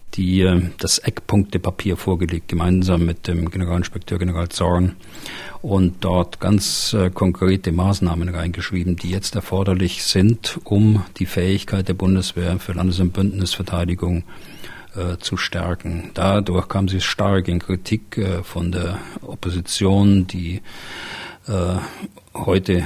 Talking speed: 120 wpm